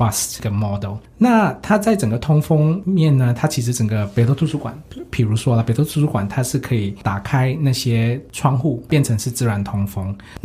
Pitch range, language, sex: 110-140 Hz, Chinese, male